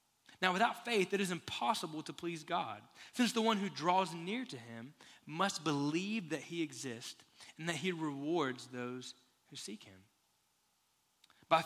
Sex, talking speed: male, 160 wpm